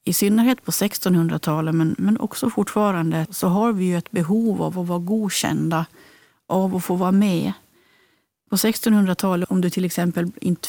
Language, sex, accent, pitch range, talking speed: Swedish, female, native, 170-205 Hz, 170 wpm